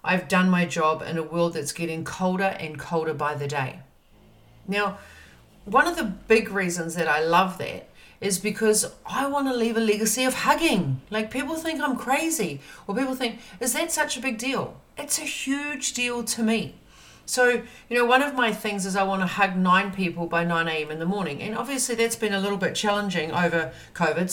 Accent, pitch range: Australian, 170-225 Hz